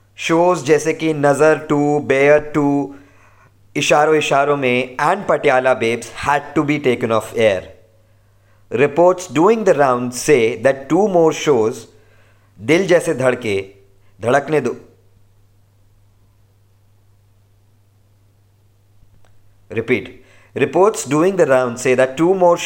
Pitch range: 100-145 Hz